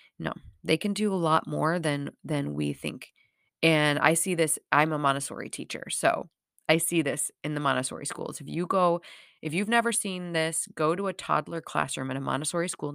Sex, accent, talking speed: female, American, 205 wpm